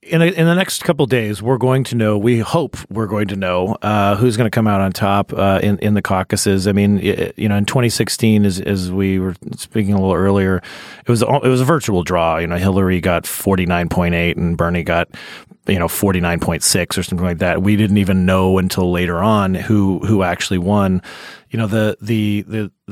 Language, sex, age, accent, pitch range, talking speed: English, male, 40-59, American, 95-120 Hz, 240 wpm